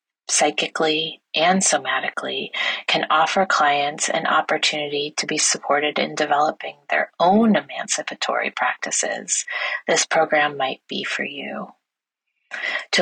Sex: female